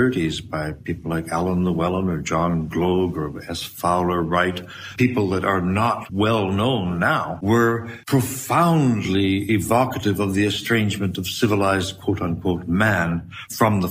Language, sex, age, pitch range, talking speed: Finnish, male, 60-79, 85-105 Hz, 130 wpm